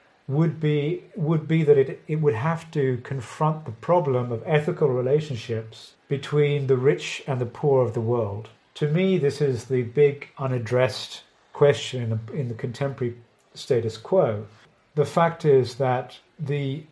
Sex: male